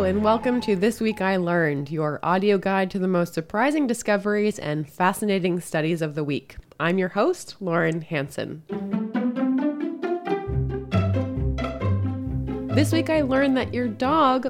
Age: 20-39